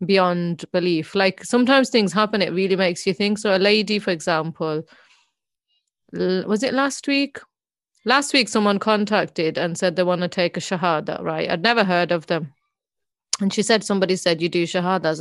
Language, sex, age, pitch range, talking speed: English, female, 30-49, 170-205 Hz, 185 wpm